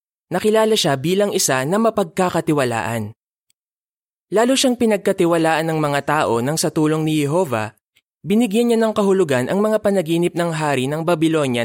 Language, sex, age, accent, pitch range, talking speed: Filipino, male, 20-39, native, 130-190 Hz, 145 wpm